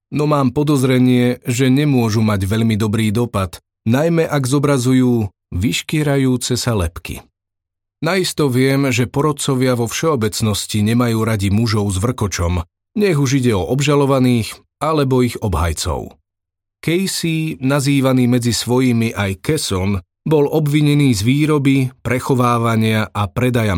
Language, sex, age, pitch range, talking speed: Slovak, male, 30-49, 110-140 Hz, 120 wpm